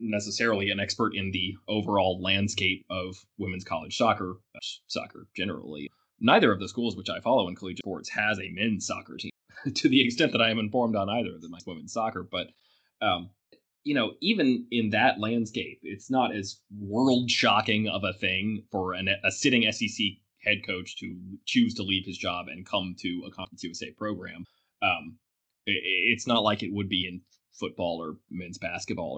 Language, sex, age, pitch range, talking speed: English, male, 20-39, 95-120 Hz, 185 wpm